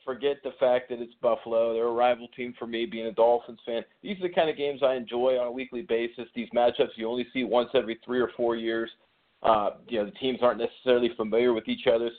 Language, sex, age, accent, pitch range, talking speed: English, male, 40-59, American, 115-155 Hz, 250 wpm